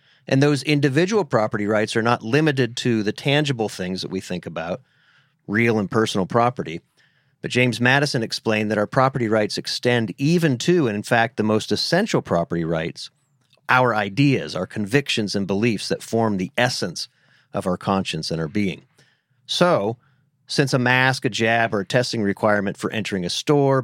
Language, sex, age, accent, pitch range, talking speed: English, male, 40-59, American, 105-135 Hz, 175 wpm